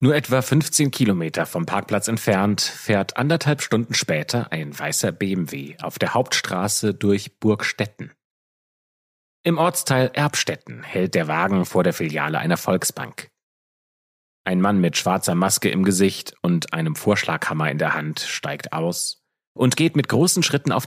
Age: 30-49